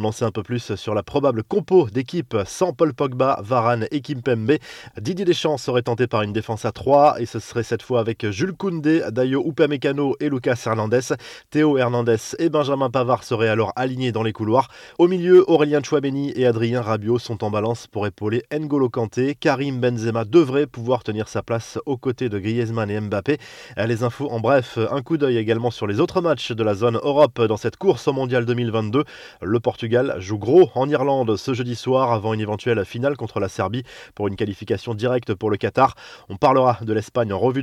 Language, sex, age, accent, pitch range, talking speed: French, male, 20-39, French, 115-145 Hz, 200 wpm